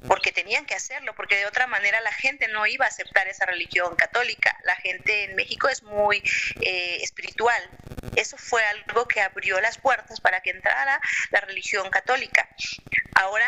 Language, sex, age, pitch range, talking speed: English, female, 30-49, 195-240 Hz, 175 wpm